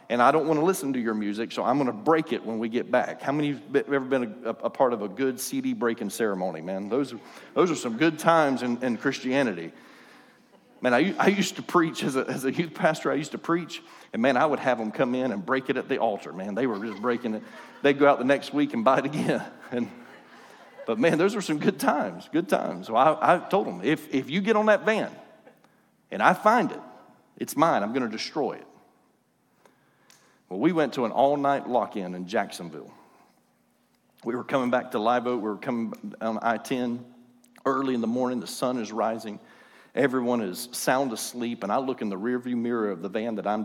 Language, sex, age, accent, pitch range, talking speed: English, male, 40-59, American, 115-145 Hz, 235 wpm